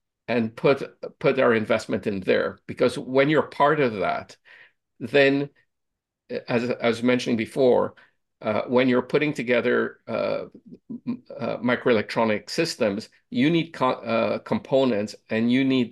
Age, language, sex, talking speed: 50-69, English, male, 130 wpm